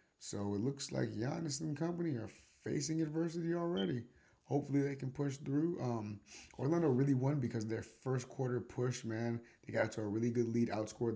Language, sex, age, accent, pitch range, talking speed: English, male, 30-49, American, 105-140 Hz, 190 wpm